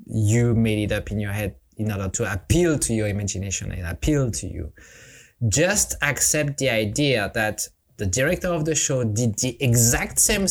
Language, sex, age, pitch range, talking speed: English, male, 20-39, 105-130 Hz, 185 wpm